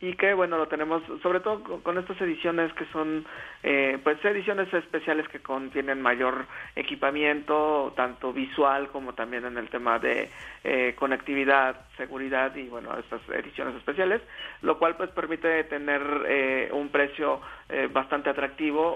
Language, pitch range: Spanish, 130-155 Hz